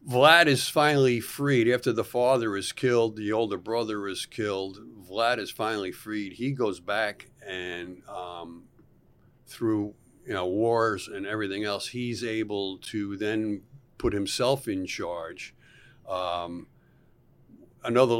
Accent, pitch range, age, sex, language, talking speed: American, 95-125 Hz, 50-69, male, English, 125 wpm